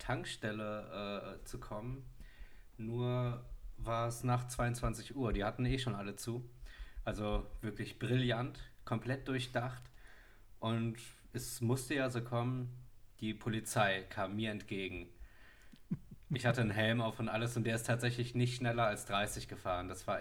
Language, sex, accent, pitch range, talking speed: German, male, German, 110-125 Hz, 150 wpm